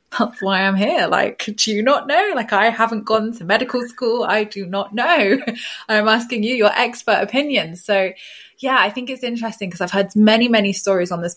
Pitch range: 185-220 Hz